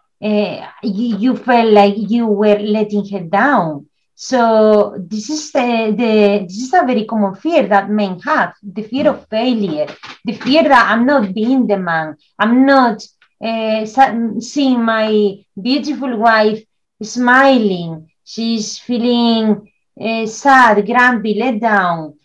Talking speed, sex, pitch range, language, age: 140 wpm, female, 200-235 Hz, English, 30-49